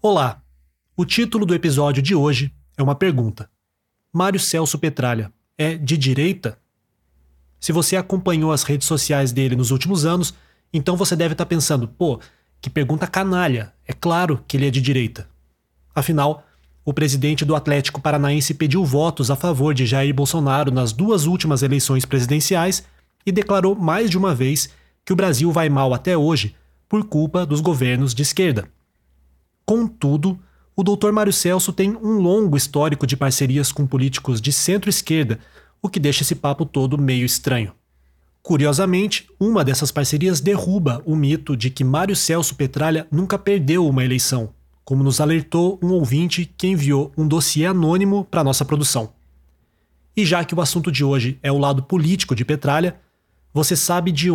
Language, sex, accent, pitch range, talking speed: Portuguese, male, Brazilian, 135-175 Hz, 160 wpm